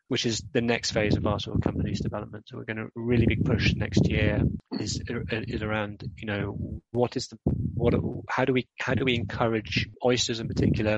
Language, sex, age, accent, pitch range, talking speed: English, male, 20-39, British, 105-115 Hz, 215 wpm